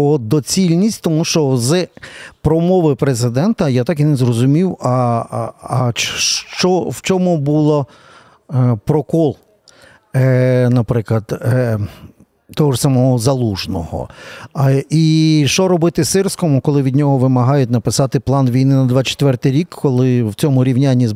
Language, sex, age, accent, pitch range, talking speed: Ukrainian, male, 50-69, native, 130-175 Hz, 125 wpm